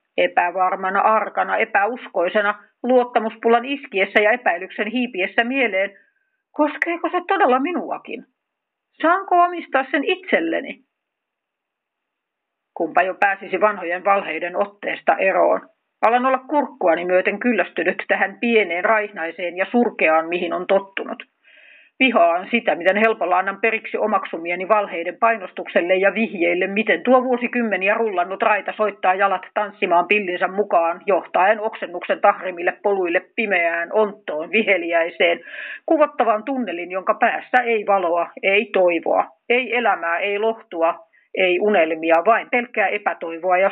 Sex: female